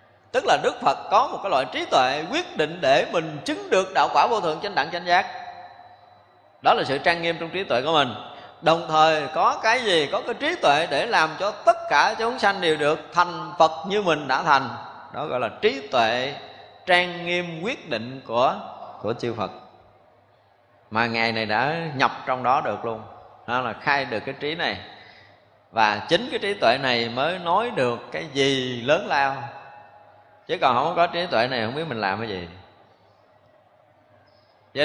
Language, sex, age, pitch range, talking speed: Vietnamese, male, 20-39, 120-165 Hz, 195 wpm